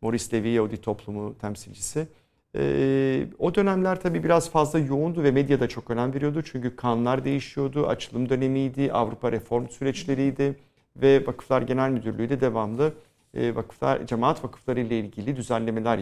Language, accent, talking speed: Turkish, native, 135 wpm